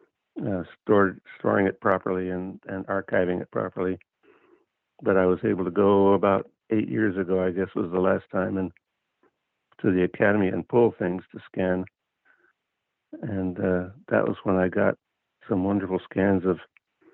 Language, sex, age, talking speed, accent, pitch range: English, male, 60-79, 160 wpm, American, 95-110 Hz